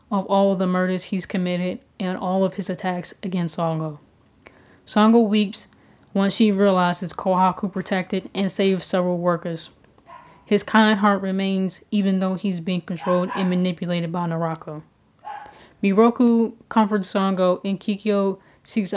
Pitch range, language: 180-200 Hz, English